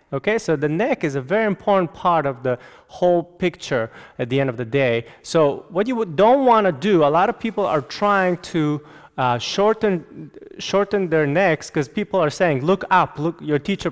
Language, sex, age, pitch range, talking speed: English, male, 30-49, 145-195 Hz, 205 wpm